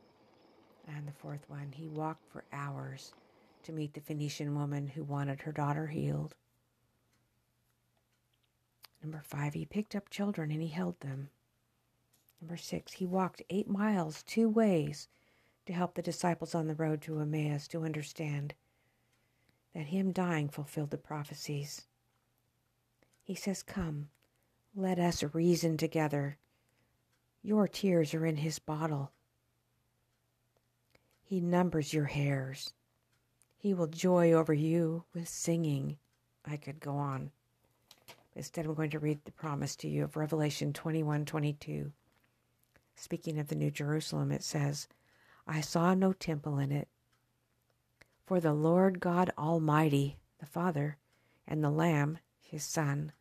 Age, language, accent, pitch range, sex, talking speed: 50-69, English, American, 135-165 Hz, female, 135 wpm